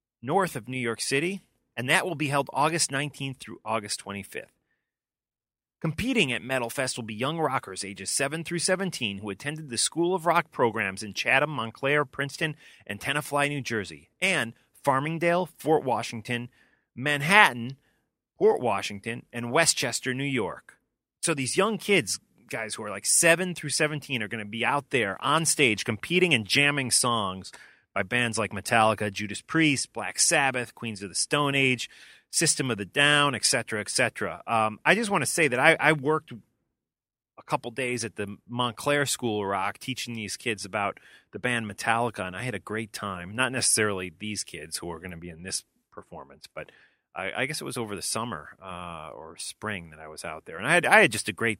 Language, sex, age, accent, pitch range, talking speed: English, male, 30-49, American, 105-145 Hz, 190 wpm